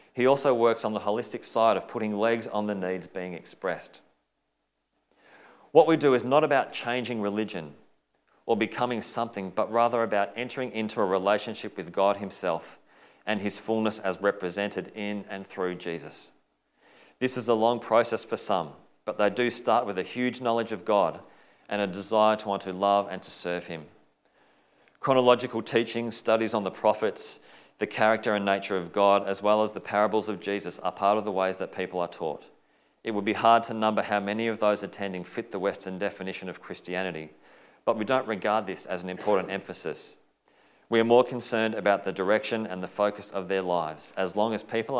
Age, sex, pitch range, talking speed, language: 40-59, male, 95-115 Hz, 190 wpm, English